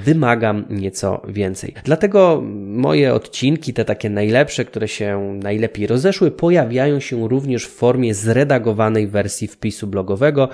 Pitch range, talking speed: 110-145 Hz, 125 wpm